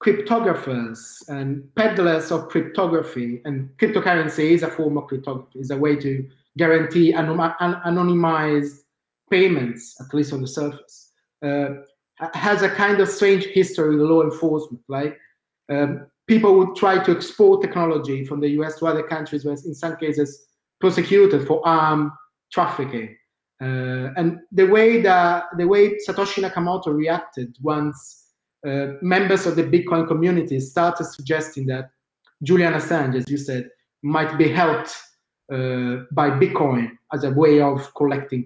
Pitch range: 140-175 Hz